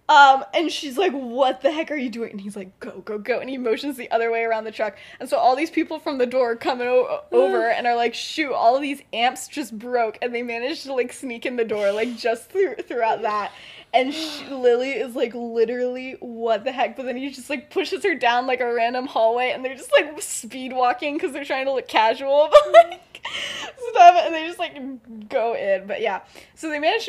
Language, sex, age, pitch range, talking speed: English, female, 10-29, 220-295 Hz, 235 wpm